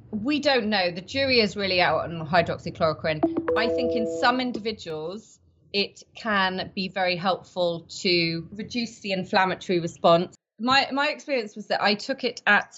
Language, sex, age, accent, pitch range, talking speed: English, female, 30-49, British, 170-210 Hz, 160 wpm